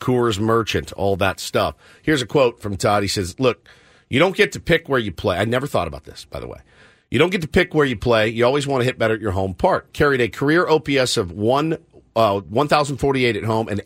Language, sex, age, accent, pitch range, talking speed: English, male, 50-69, American, 115-150 Hz, 250 wpm